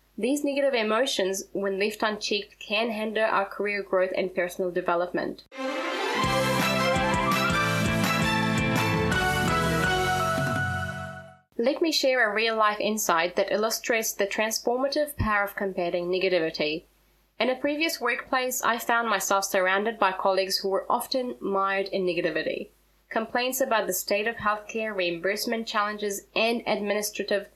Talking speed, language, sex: 120 wpm, English, female